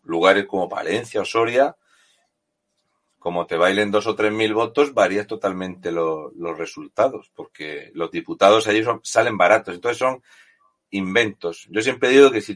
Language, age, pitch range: Spanish, 40-59, 95-125 Hz